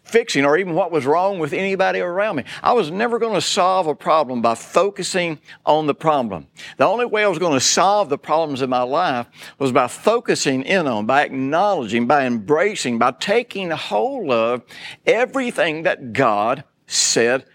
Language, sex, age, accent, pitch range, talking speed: English, male, 60-79, American, 120-165 Hz, 180 wpm